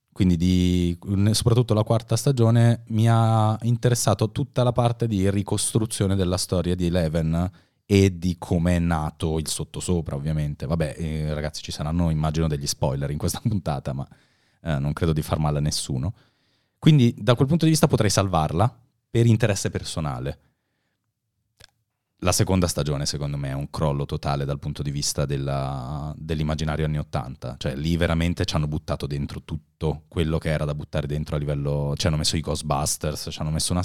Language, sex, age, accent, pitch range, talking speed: Italian, male, 30-49, native, 75-115 Hz, 175 wpm